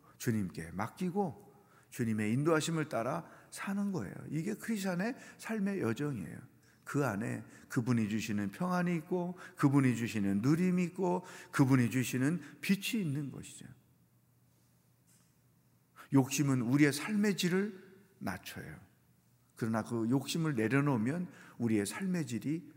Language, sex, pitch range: Korean, male, 115-165 Hz